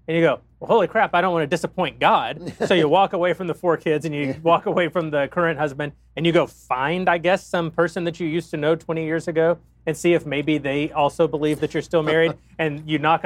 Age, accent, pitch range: 30-49, American, 125-160 Hz